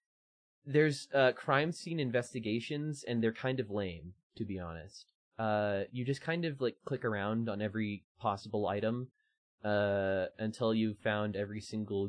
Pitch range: 100-125 Hz